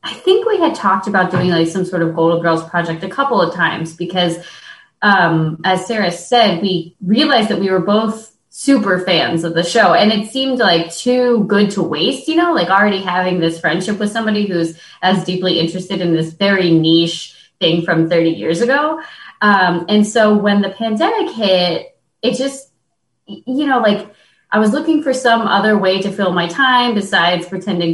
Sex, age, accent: female, 20-39, American